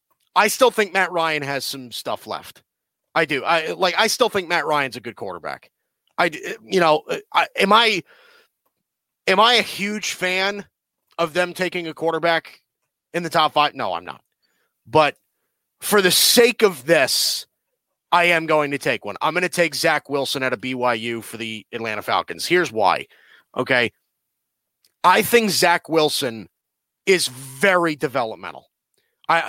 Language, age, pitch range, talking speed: English, 30-49, 150-185 Hz, 165 wpm